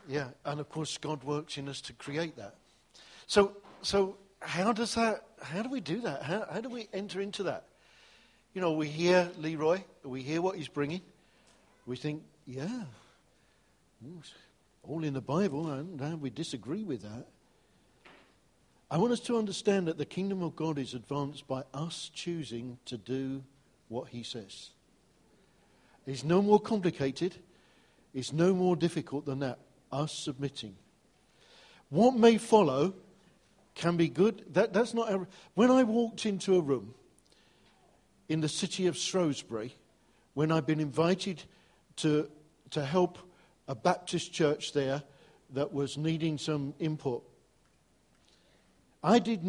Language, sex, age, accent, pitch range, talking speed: English, male, 50-69, British, 145-195 Hz, 150 wpm